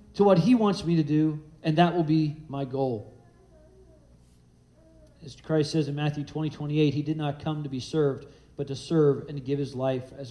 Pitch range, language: 110-165 Hz, English